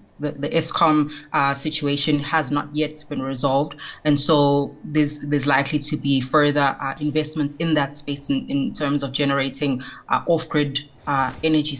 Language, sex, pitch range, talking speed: English, female, 140-155 Hz, 160 wpm